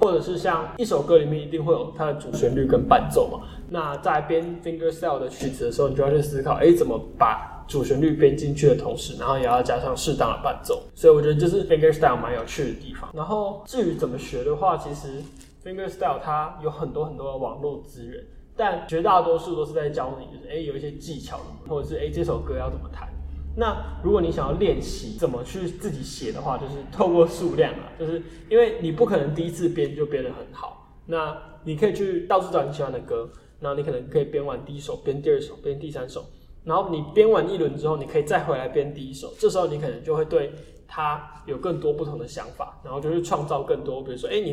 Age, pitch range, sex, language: 20-39, 150-245 Hz, male, Chinese